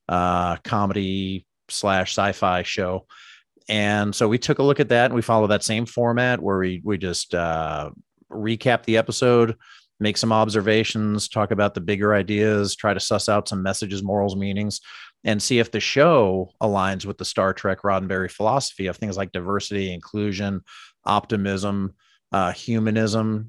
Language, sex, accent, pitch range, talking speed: English, male, American, 95-115 Hz, 160 wpm